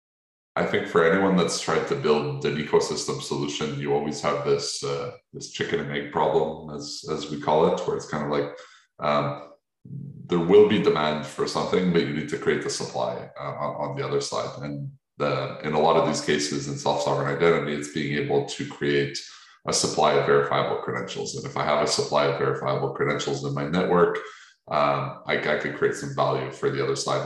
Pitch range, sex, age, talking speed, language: 70-105 Hz, male, 20-39, 210 wpm, English